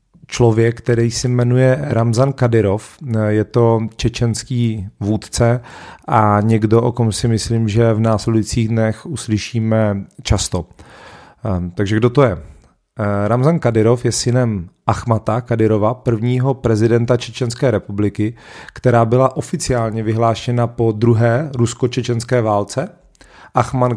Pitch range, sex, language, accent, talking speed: 110-125 Hz, male, Czech, native, 115 wpm